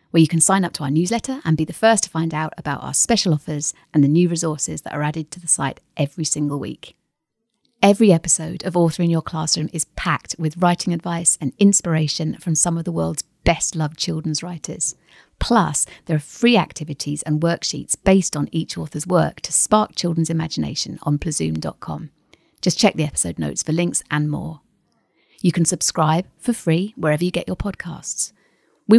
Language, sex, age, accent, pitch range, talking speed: English, female, 40-59, British, 155-185 Hz, 195 wpm